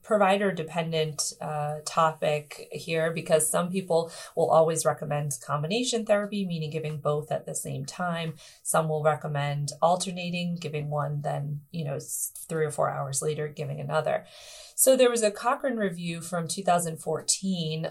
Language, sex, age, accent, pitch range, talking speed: English, female, 30-49, American, 155-200 Hz, 145 wpm